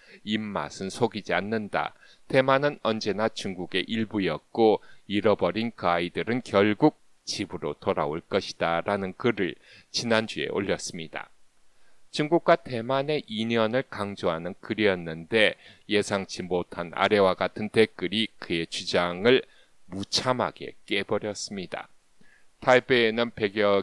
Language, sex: English, male